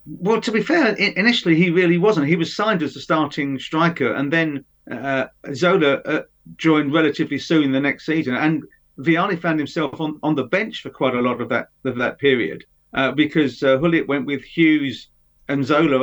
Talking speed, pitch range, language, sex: 200 wpm, 135-165 Hz, English, male